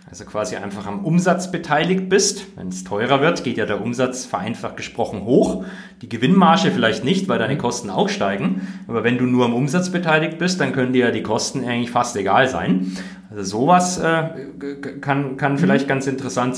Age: 40-59